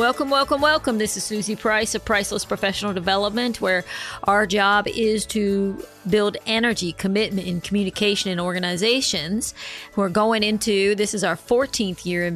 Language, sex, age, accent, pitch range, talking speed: English, female, 40-59, American, 190-225 Hz, 155 wpm